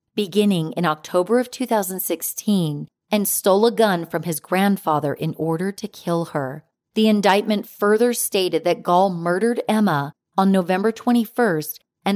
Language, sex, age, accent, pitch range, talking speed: English, female, 40-59, American, 165-210 Hz, 145 wpm